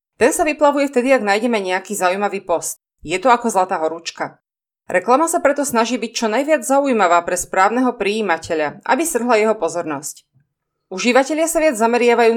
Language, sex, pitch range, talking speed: Slovak, female, 175-260 Hz, 160 wpm